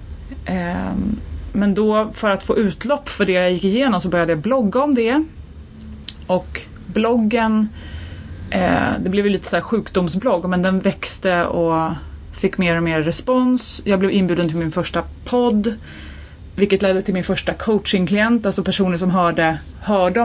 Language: Swedish